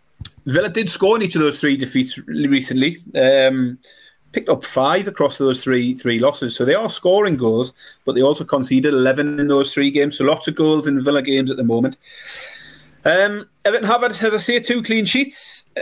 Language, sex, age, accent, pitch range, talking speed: English, male, 30-49, British, 130-185 Hz, 195 wpm